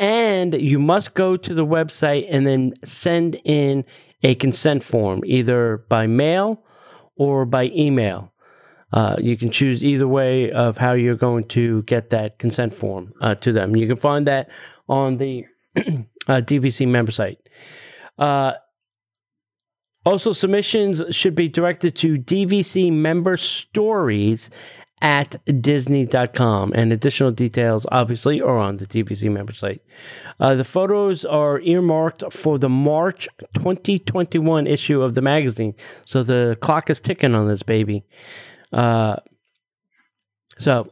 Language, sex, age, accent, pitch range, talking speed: English, male, 30-49, American, 115-150 Hz, 135 wpm